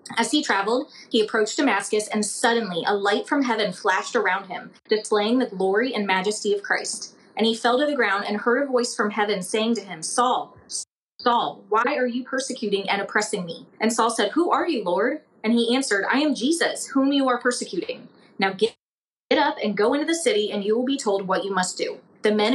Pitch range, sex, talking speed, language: 205-250 Hz, female, 220 wpm, English